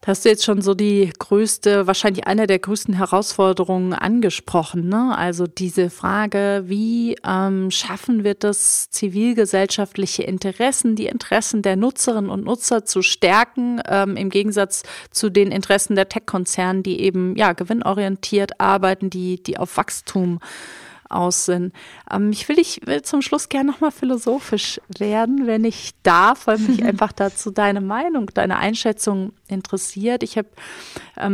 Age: 30-49